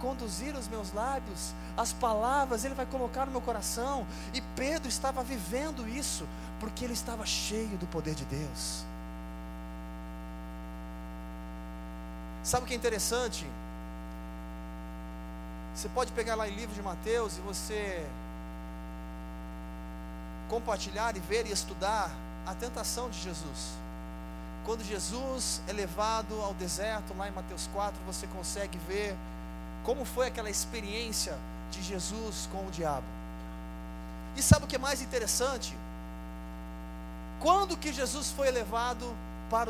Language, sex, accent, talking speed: Portuguese, male, Brazilian, 125 wpm